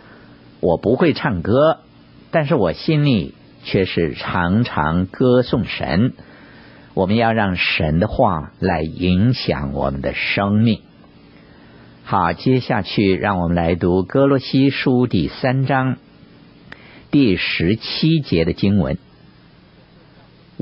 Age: 50-69